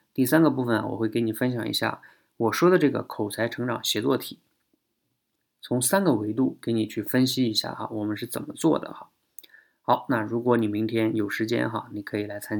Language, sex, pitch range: Chinese, male, 110-130 Hz